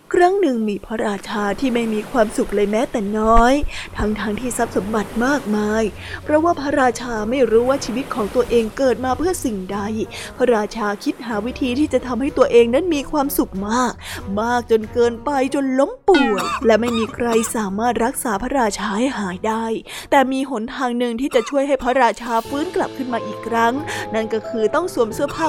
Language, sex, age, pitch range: Thai, female, 20-39, 225-275 Hz